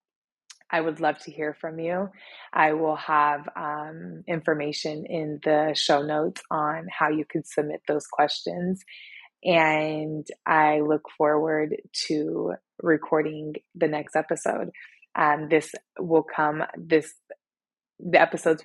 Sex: female